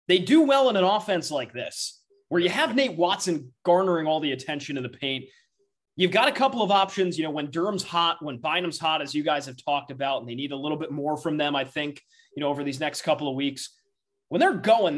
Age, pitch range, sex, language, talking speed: 20-39, 140-185 Hz, male, English, 250 wpm